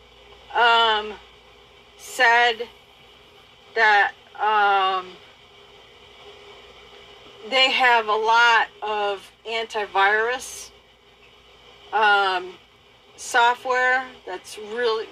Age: 50-69